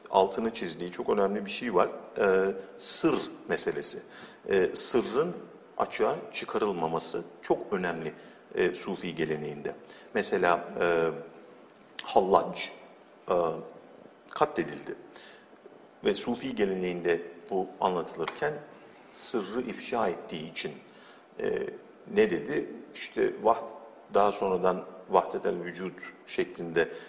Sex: male